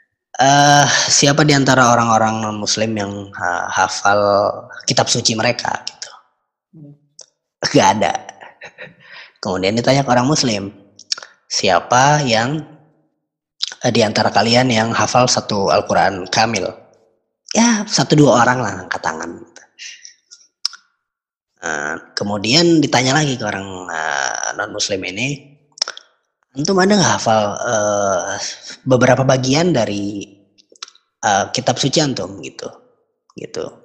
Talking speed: 105 wpm